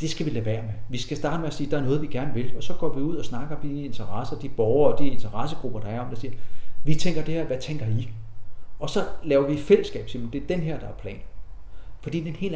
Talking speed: 305 wpm